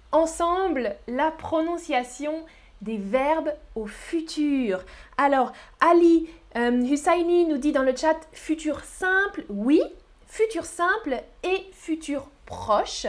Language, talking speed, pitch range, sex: French, 110 wpm, 255-345 Hz, female